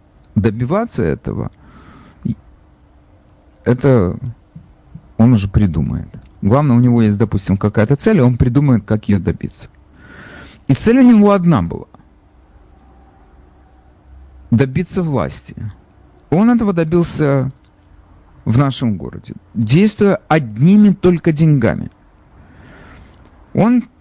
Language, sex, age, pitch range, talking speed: Russian, male, 50-69, 100-145 Hz, 95 wpm